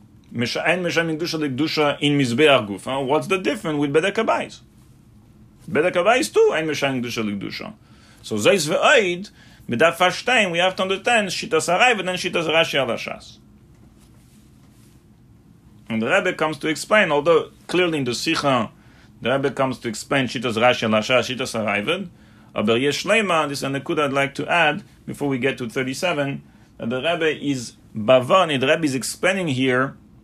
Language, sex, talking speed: English, male, 170 wpm